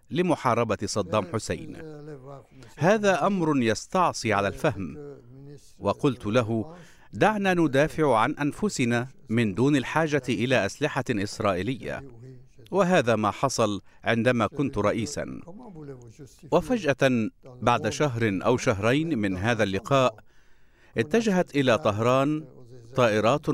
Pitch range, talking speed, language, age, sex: 115-150 Hz, 95 wpm, Arabic, 50-69, male